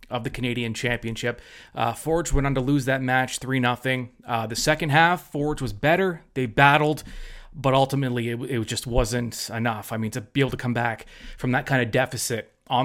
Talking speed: 195 wpm